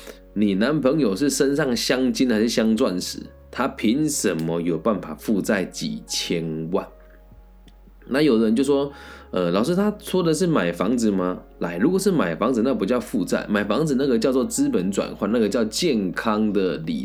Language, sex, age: Chinese, male, 20-39